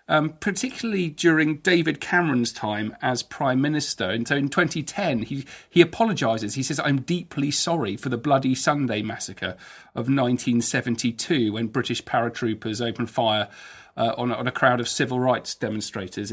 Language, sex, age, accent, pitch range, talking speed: English, male, 40-59, British, 120-155 Hz, 155 wpm